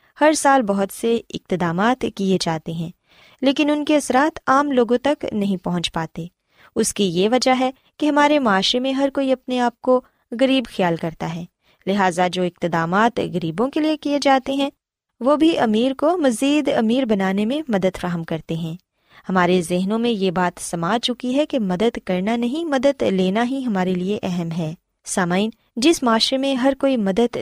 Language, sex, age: Punjabi, female, 20-39